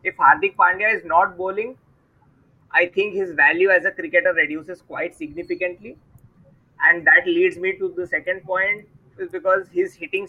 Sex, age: male, 20-39